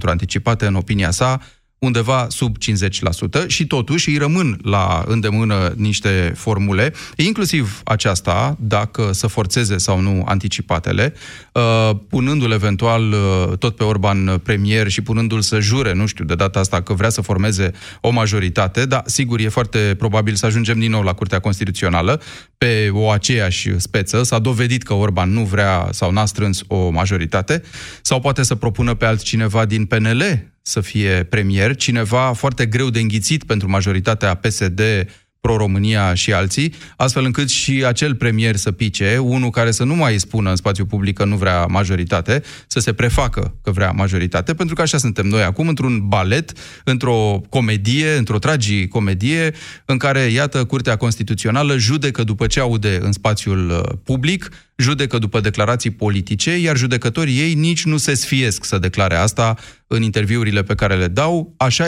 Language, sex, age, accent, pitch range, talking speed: Romanian, male, 30-49, native, 100-130 Hz, 160 wpm